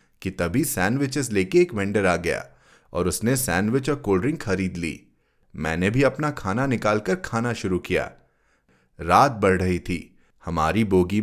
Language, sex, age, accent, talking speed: Hindi, male, 30-49, native, 160 wpm